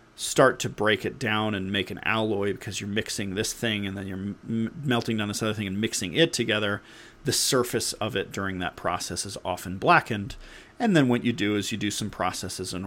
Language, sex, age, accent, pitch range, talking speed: English, male, 40-59, American, 95-120 Hz, 220 wpm